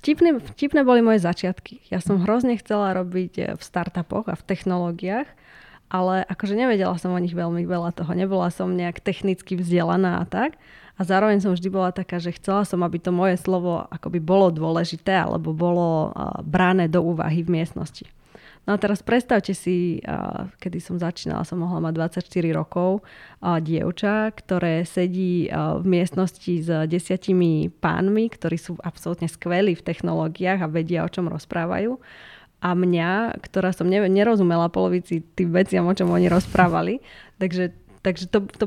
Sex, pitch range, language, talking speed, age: female, 170-190 Hz, Slovak, 160 wpm, 20-39